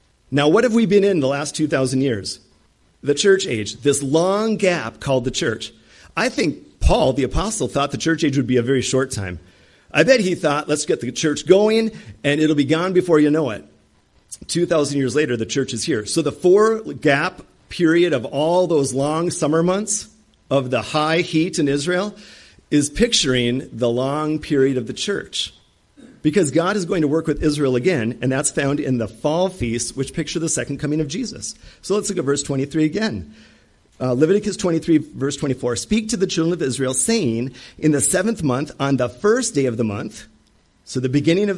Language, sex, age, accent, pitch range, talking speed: English, male, 50-69, American, 125-165 Hz, 200 wpm